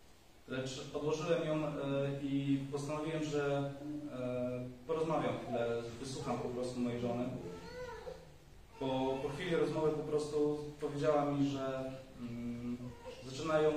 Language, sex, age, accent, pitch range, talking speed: Polish, male, 30-49, native, 125-150 Hz, 120 wpm